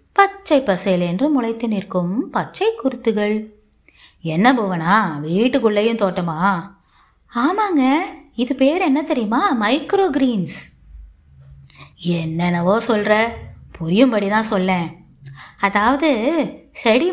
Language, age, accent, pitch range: Tamil, 20-39, native, 190-270 Hz